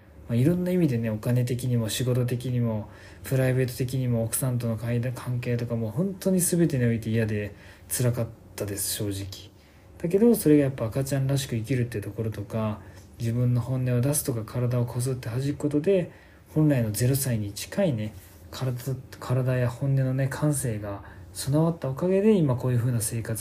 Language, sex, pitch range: Japanese, male, 105-135 Hz